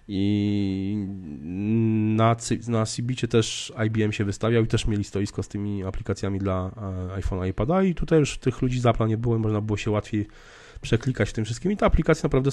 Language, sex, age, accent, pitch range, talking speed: Polish, male, 20-39, native, 100-125 Hz, 185 wpm